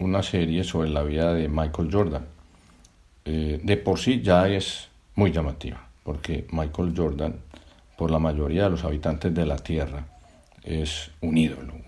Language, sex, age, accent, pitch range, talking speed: Spanish, male, 60-79, Spanish, 80-95 Hz, 155 wpm